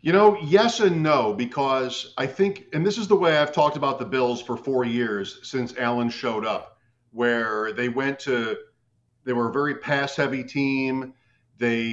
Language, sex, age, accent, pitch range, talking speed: English, male, 50-69, American, 120-140 Hz, 180 wpm